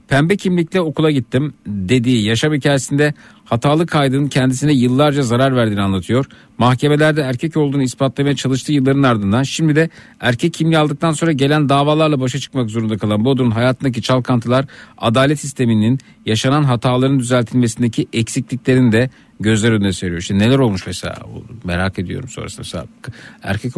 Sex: male